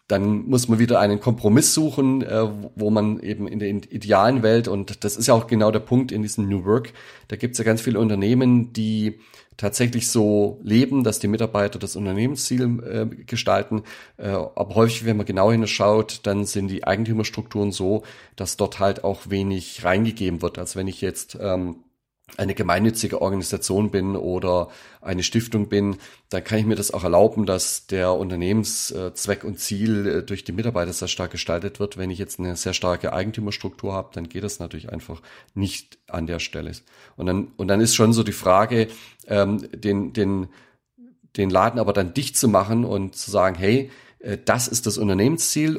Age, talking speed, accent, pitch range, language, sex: 40-59, 175 wpm, German, 95-115 Hz, German, male